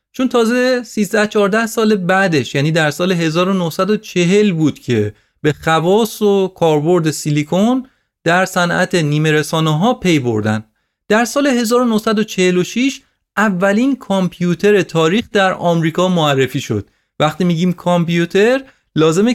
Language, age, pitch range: Persian, 30-49, 155-215 Hz